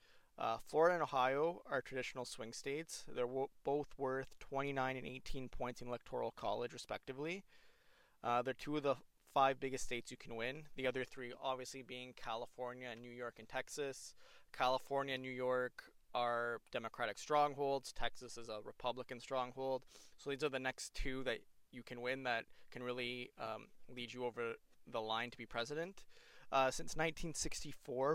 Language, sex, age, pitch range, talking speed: English, male, 20-39, 120-140 Hz, 165 wpm